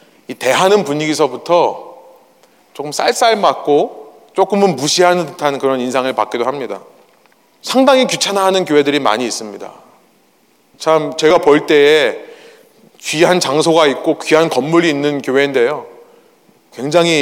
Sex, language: male, Korean